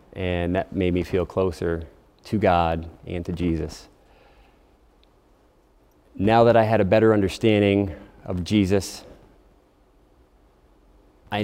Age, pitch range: 30-49, 90-105 Hz